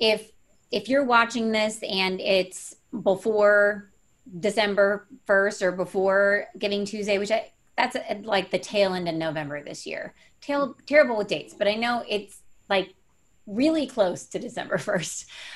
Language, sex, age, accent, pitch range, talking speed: English, female, 30-49, American, 175-215 Hz, 150 wpm